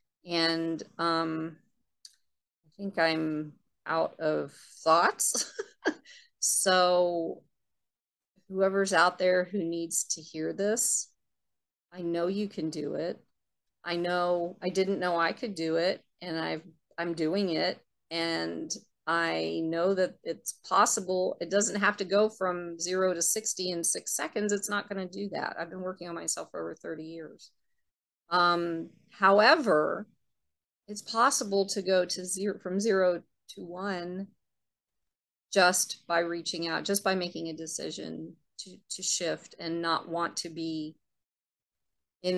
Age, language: 30-49, English